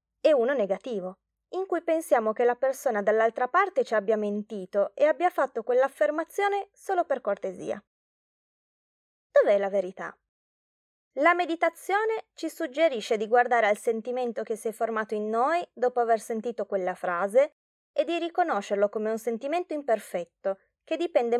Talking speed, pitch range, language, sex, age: 145 wpm, 205-295 Hz, Italian, female, 20-39